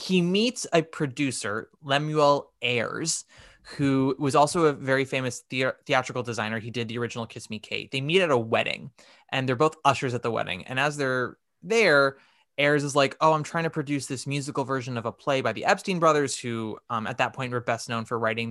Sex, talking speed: male, 210 wpm